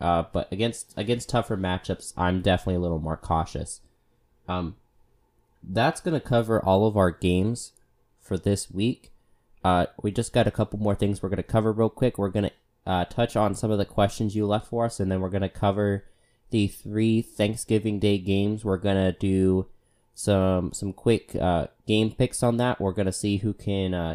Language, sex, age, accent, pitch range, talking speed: English, male, 20-39, American, 95-110 Hz, 205 wpm